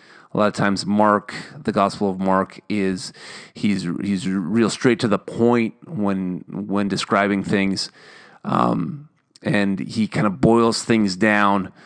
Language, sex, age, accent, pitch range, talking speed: English, male, 30-49, American, 95-110 Hz, 145 wpm